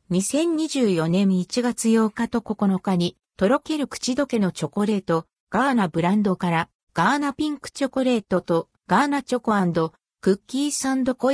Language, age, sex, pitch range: Japanese, 50-69, female, 180-260 Hz